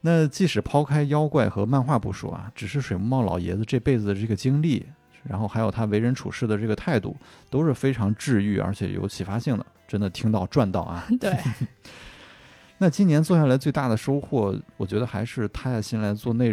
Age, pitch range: 20-39, 105-130 Hz